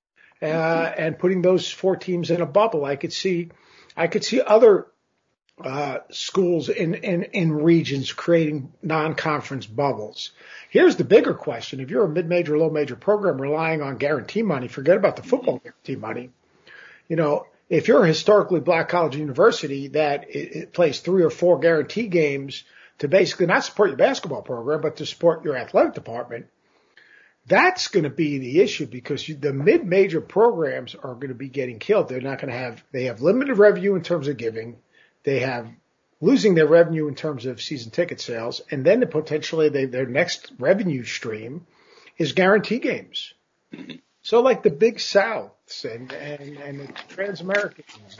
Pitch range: 140-185 Hz